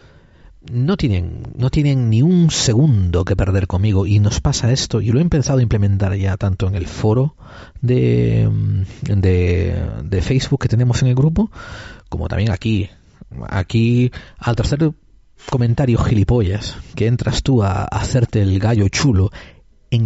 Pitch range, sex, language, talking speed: 100-130 Hz, male, Spanish, 155 wpm